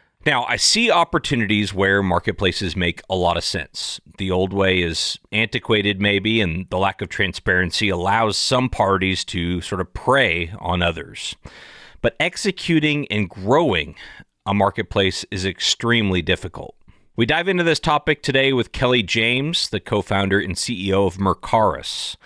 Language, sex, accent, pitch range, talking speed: English, male, American, 90-110 Hz, 150 wpm